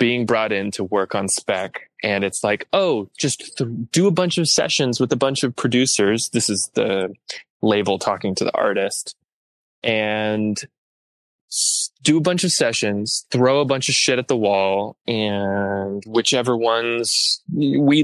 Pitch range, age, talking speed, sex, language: 100-125 Hz, 20-39, 165 wpm, male, English